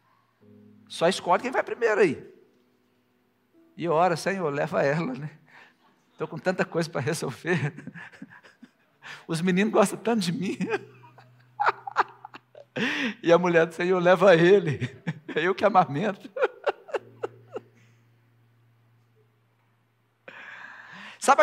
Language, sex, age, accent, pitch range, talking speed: Portuguese, male, 60-79, Brazilian, 120-195 Hz, 100 wpm